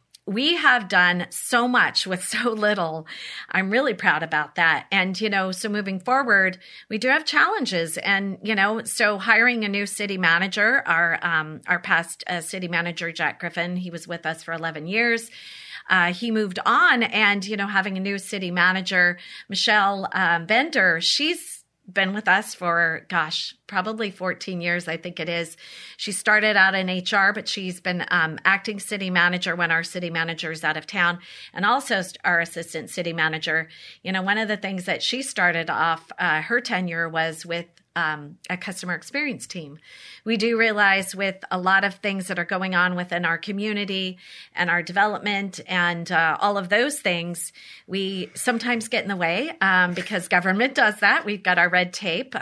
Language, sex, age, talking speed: English, female, 30-49, 185 wpm